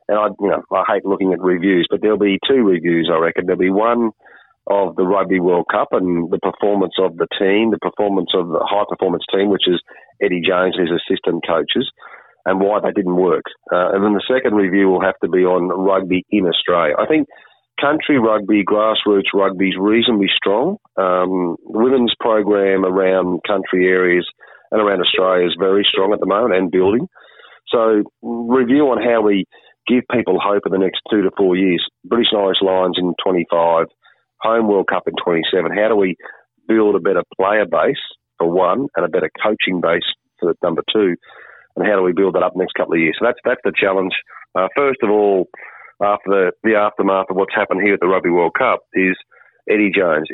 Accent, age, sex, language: Australian, 40-59, male, English